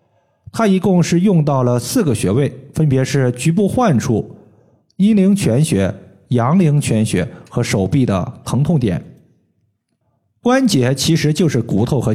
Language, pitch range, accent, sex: Chinese, 110-160 Hz, native, male